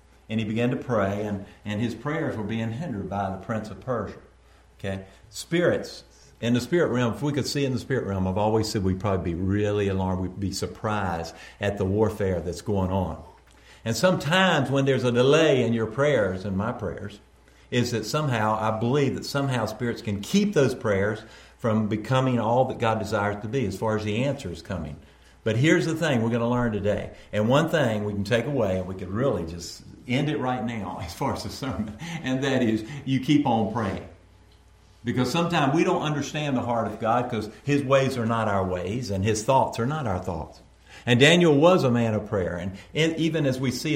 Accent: American